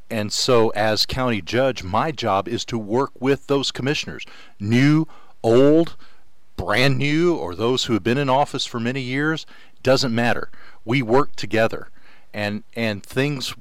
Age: 50-69